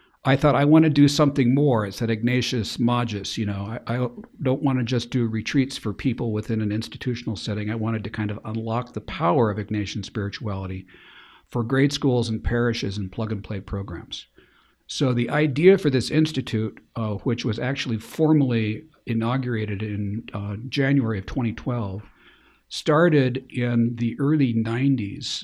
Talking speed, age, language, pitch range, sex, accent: 165 wpm, 60-79, English, 110-130 Hz, male, American